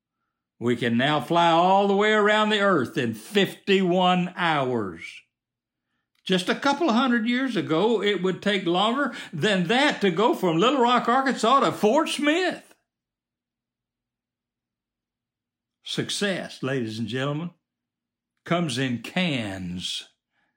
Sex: male